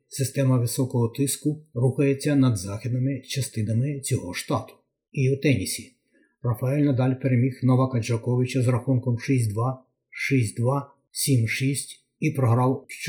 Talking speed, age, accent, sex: 110 wpm, 30-49, native, male